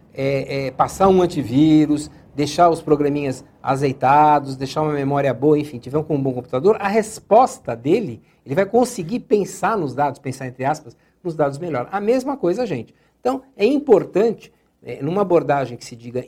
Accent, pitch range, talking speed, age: Brazilian, 135-190 Hz, 160 wpm, 60-79